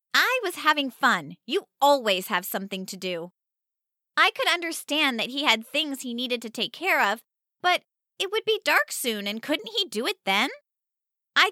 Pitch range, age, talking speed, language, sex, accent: 215-310 Hz, 20-39, 190 wpm, English, female, American